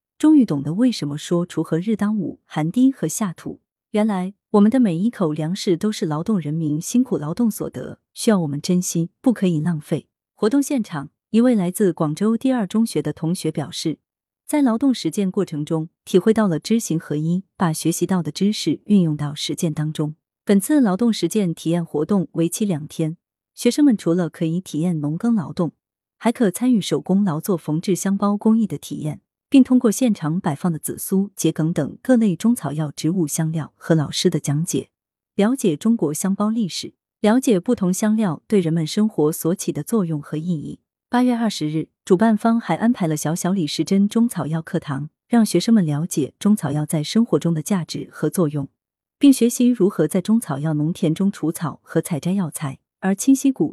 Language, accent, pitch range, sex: Chinese, native, 155-215 Hz, female